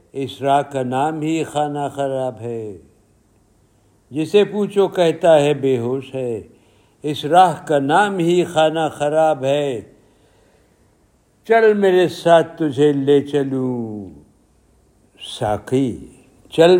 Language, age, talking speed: Urdu, 60-79, 110 wpm